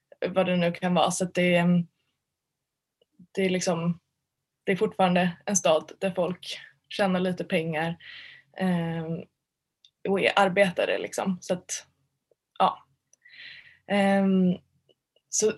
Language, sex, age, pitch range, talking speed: Swedish, female, 20-39, 175-195 Hz, 110 wpm